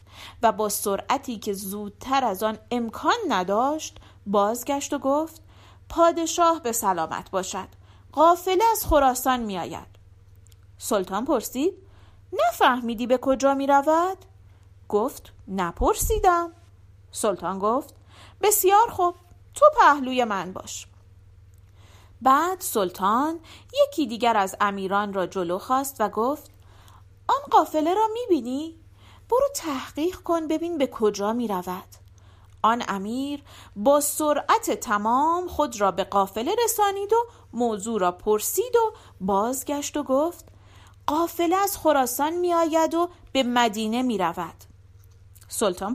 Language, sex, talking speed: Persian, female, 120 wpm